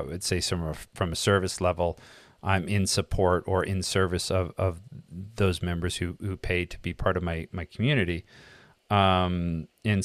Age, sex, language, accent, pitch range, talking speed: 30-49, male, English, American, 85-100 Hz, 180 wpm